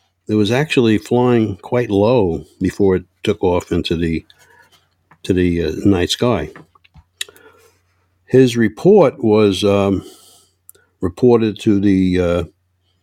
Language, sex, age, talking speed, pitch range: English, male, 60-79, 115 wpm, 90-105 Hz